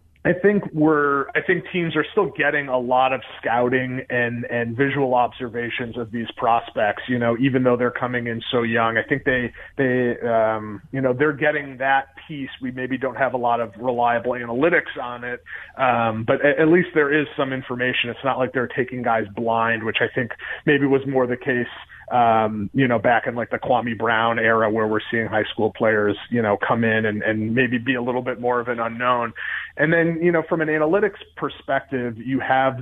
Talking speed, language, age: 210 wpm, English, 30-49